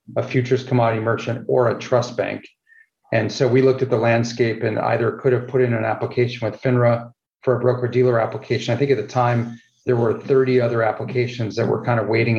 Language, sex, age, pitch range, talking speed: English, male, 40-59, 110-130 Hz, 215 wpm